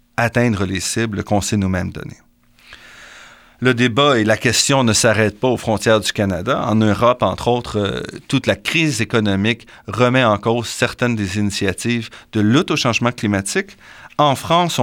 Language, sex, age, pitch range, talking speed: French, male, 40-59, 105-140 Hz, 165 wpm